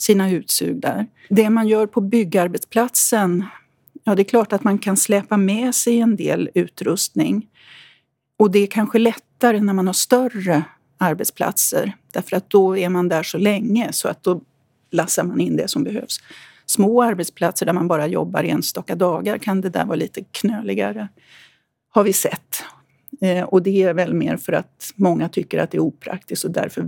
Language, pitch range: Swedish, 185-220 Hz